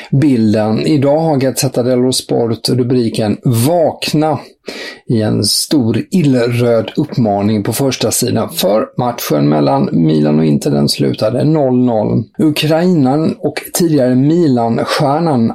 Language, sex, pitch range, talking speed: English, male, 115-150 Hz, 110 wpm